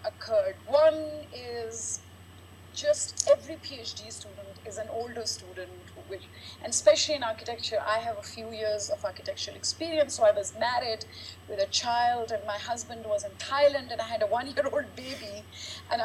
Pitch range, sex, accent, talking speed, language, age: 215-310 Hz, female, Indian, 160 wpm, English, 30-49